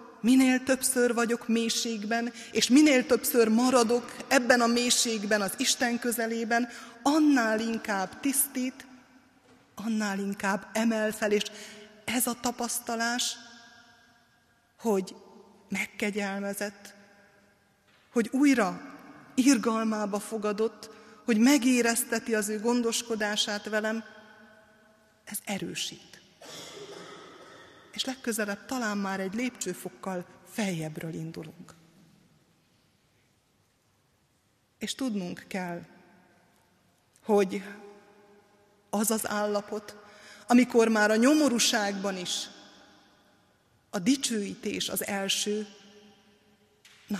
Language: Hungarian